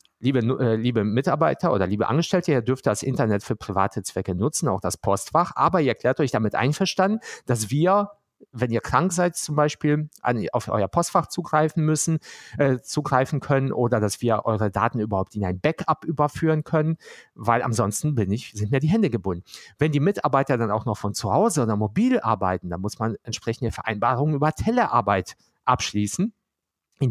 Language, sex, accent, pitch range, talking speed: German, male, German, 105-145 Hz, 180 wpm